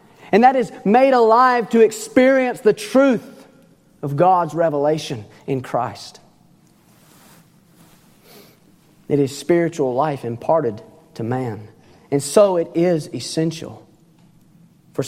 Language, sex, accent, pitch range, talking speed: English, male, American, 145-180 Hz, 105 wpm